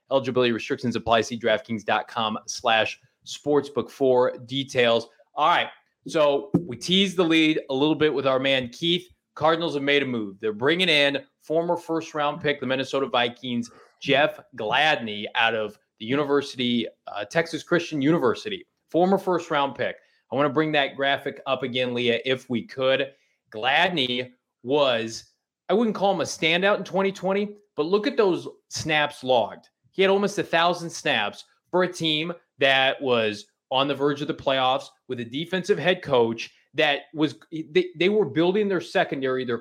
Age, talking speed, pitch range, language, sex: 30-49, 165 wpm, 130-175 Hz, English, male